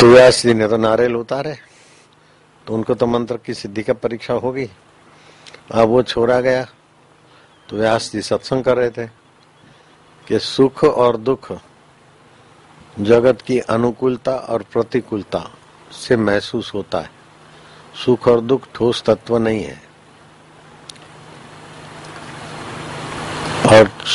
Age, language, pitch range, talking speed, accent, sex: 50-69, Hindi, 110-125 Hz, 115 wpm, native, male